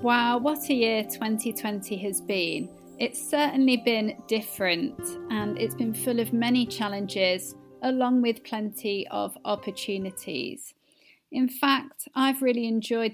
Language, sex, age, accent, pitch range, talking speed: English, female, 30-49, British, 200-245 Hz, 130 wpm